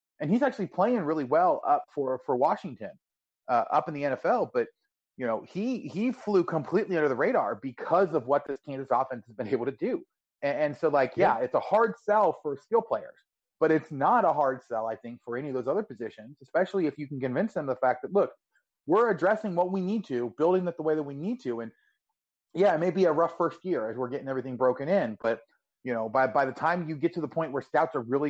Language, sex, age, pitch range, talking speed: English, male, 30-49, 125-175 Hz, 250 wpm